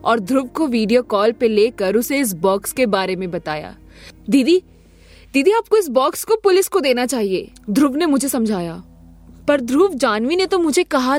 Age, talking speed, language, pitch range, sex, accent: 20-39, 80 wpm, Hindi, 195-280 Hz, female, native